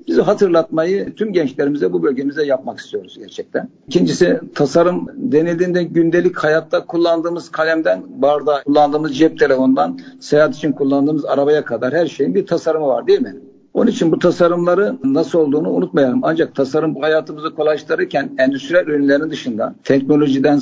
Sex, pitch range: male, 135-165 Hz